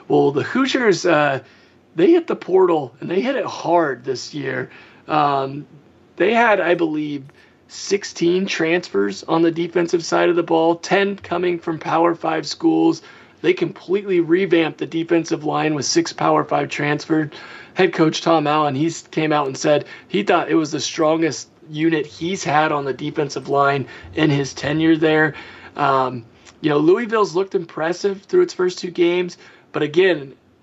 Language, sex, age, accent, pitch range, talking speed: English, male, 30-49, American, 150-180 Hz, 165 wpm